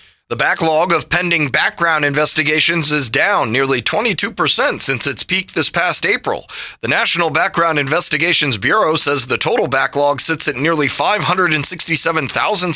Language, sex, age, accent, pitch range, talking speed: English, male, 30-49, American, 135-175 Hz, 140 wpm